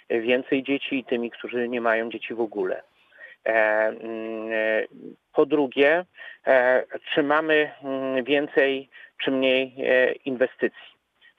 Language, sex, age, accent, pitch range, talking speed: Polish, male, 40-59, native, 115-135 Hz, 95 wpm